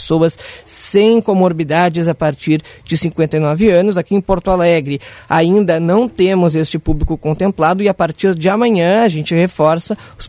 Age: 20-39